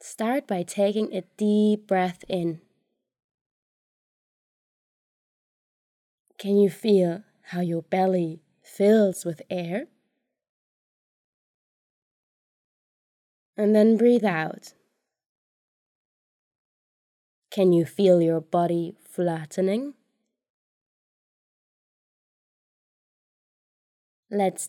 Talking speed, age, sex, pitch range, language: 65 wpm, 20-39, female, 175-210 Hz, Dutch